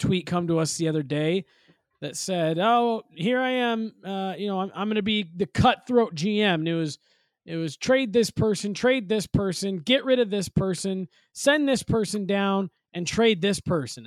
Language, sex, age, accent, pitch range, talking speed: English, male, 20-39, American, 160-220 Hz, 205 wpm